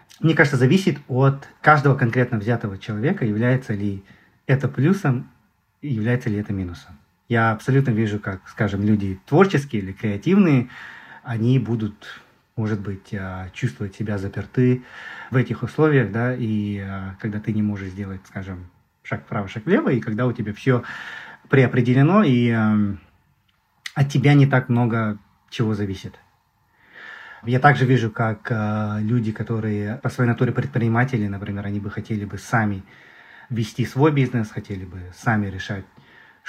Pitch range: 105-130 Hz